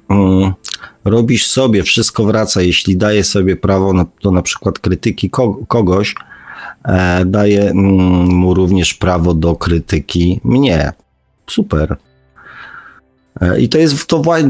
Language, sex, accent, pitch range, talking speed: Polish, male, native, 90-105 Hz, 130 wpm